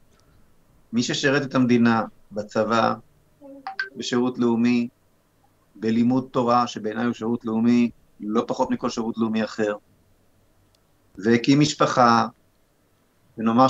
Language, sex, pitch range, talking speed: Hebrew, male, 110-165 Hz, 95 wpm